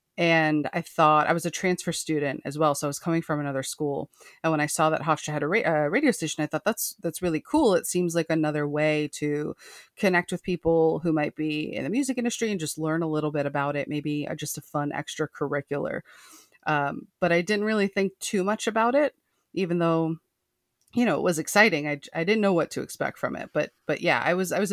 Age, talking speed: 30-49, 235 wpm